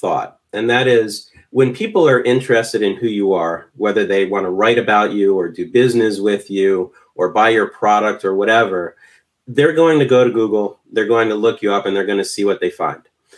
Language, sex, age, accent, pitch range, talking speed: English, male, 30-49, American, 105-130 Hz, 225 wpm